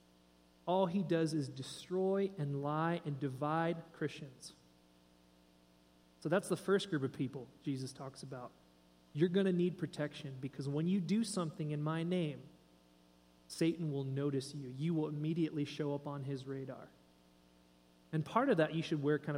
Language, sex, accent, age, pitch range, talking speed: English, male, American, 30-49, 130-170 Hz, 165 wpm